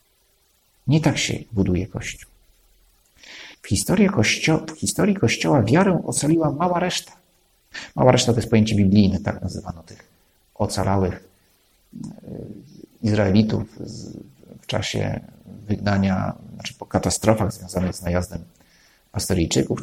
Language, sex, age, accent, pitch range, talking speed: Polish, male, 50-69, native, 95-135 Hz, 105 wpm